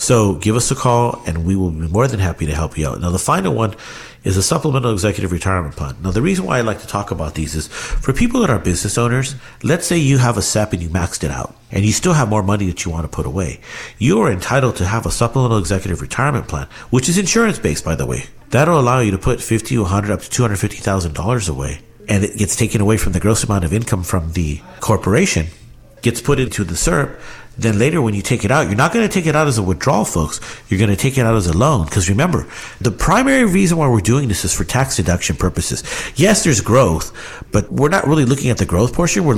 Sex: male